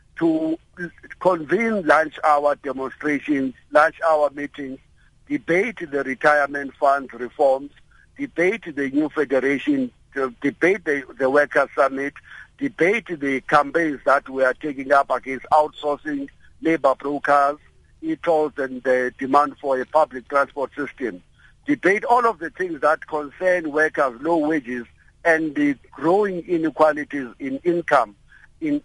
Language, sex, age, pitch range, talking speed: English, male, 60-79, 140-185 Hz, 125 wpm